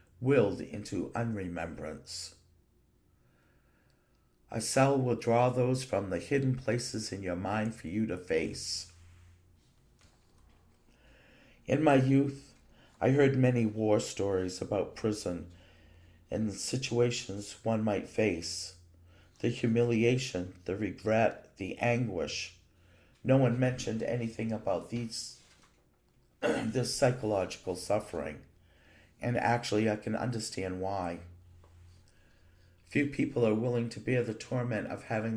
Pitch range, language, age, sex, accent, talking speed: 90-120 Hz, English, 50-69, male, American, 110 wpm